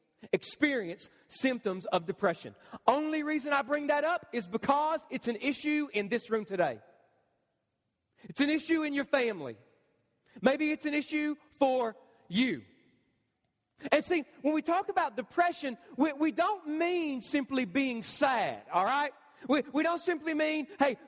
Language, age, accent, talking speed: English, 40-59, American, 150 wpm